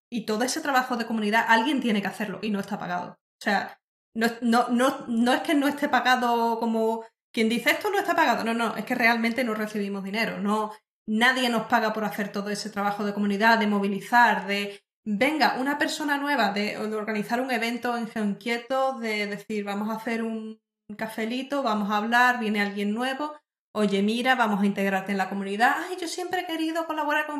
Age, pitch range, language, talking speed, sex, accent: 20-39, 210-255 Hz, Spanish, 210 wpm, female, Spanish